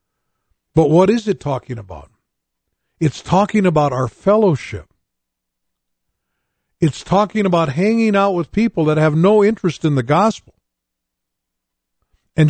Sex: male